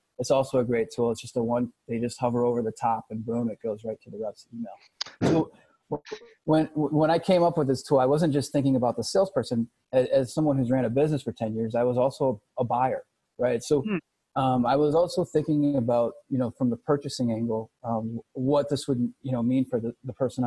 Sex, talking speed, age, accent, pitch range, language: male, 240 wpm, 30-49, American, 120-145 Hz, English